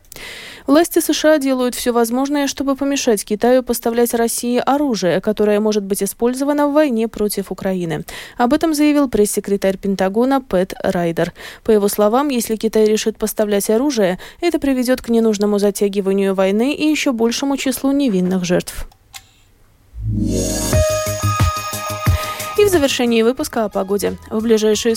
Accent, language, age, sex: native, Russian, 20-39, female